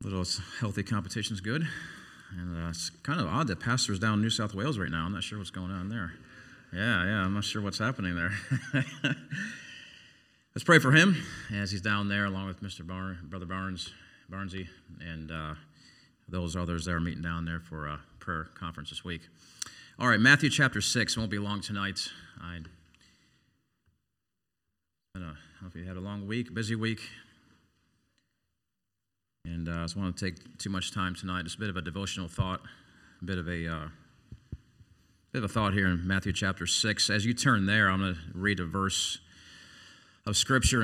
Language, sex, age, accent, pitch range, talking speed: English, male, 40-59, American, 90-115 Hz, 185 wpm